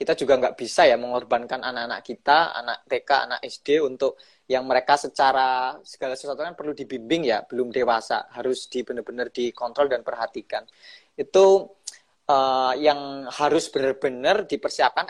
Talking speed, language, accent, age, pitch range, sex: 145 wpm, Indonesian, native, 20-39, 135-195 Hz, male